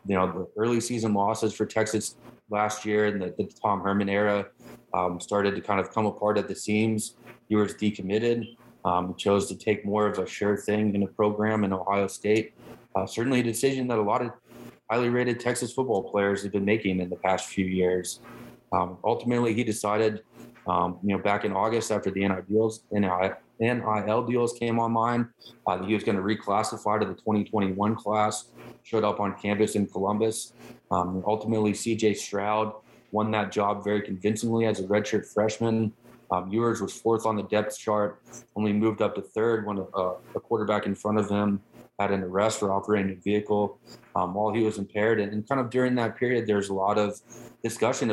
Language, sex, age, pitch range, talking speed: English, male, 20-39, 100-110 Hz, 195 wpm